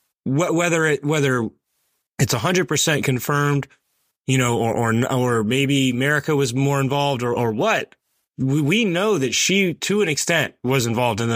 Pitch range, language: 115-145 Hz, English